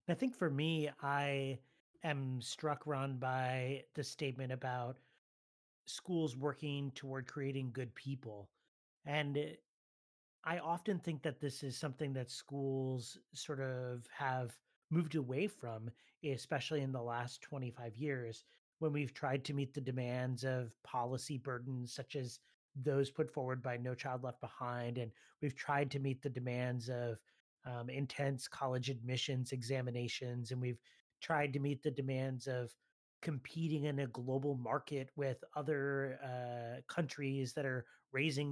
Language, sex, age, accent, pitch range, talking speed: English, male, 30-49, American, 125-150 Hz, 145 wpm